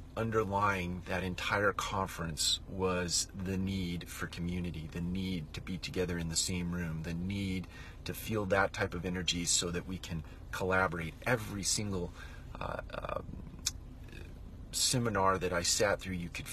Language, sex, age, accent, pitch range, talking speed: English, male, 30-49, American, 85-100 Hz, 155 wpm